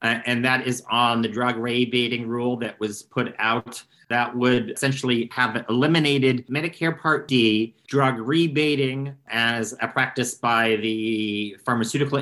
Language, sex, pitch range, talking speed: English, male, 120-135 Hz, 135 wpm